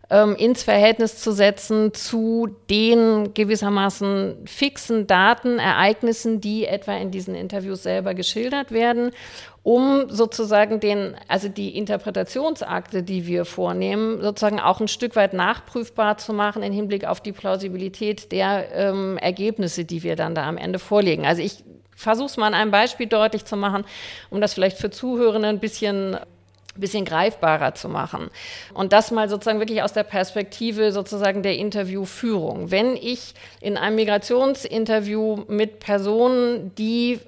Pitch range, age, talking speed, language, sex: 200-230 Hz, 50-69, 145 wpm, German, female